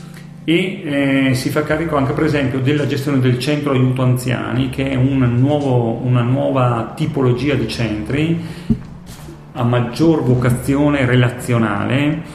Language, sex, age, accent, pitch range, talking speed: Italian, male, 40-59, native, 120-140 Hz, 120 wpm